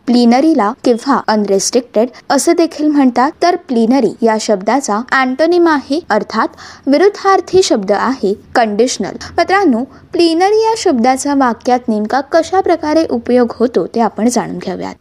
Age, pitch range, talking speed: 20-39, 240-330 Hz, 110 wpm